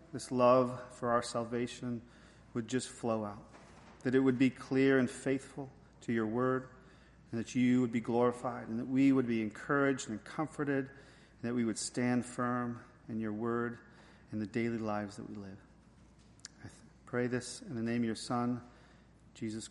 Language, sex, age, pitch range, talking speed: English, male, 40-59, 120-165 Hz, 180 wpm